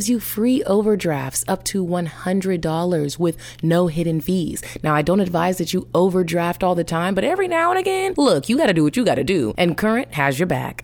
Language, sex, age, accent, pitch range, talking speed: English, female, 20-39, American, 160-250 Hz, 210 wpm